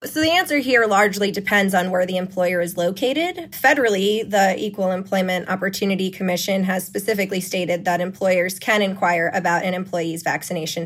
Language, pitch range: English, 170-200 Hz